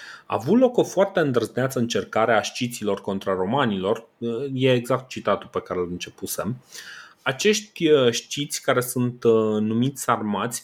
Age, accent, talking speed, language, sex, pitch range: 30-49, native, 130 wpm, Romanian, male, 115-145 Hz